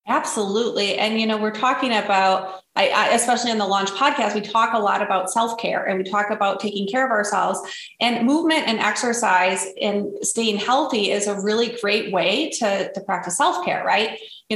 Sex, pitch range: female, 200-250 Hz